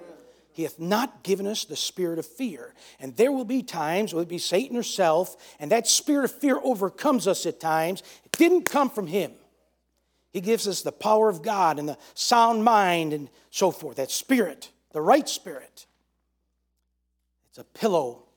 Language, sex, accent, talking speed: English, male, American, 180 wpm